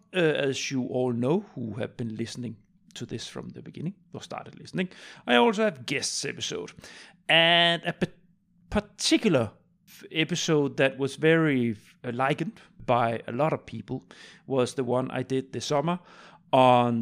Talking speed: 165 wpm